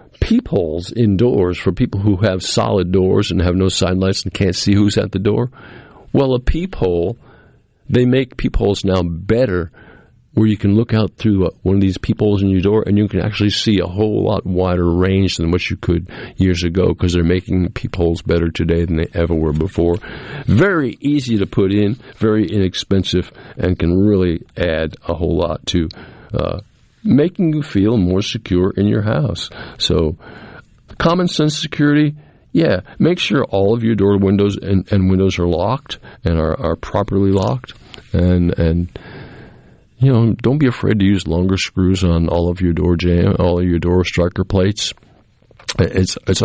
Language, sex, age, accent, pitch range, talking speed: English, male, 50-69, American, 90-110 Hz, 185 wpm